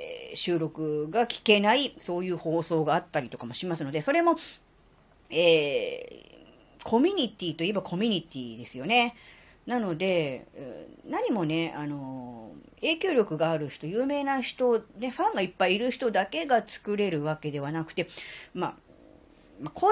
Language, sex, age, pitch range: Japanese, female, 40-59, 155-245 Hz